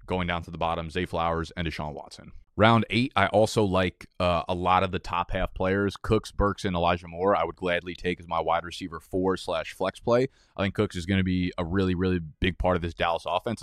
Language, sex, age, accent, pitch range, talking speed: English, male, 20-39, American, 85-100 Hz, 245 wpm